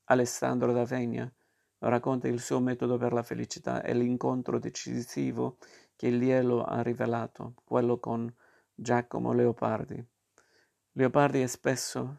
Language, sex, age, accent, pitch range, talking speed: Italian, male, 50-69, native, 120-125 Hz, 115 wpm